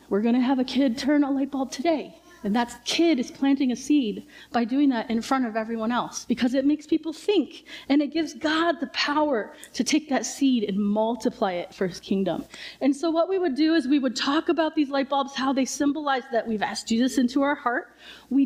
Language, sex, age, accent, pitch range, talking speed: English, female, 30-49, American, 240-300 Hz, 230 wpm